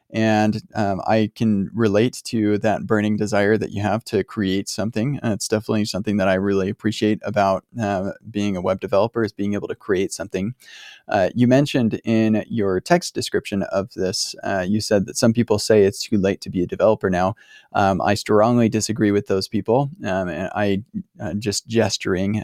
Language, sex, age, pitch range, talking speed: English, male, 20-39, 100-110 Hz, 195 wpm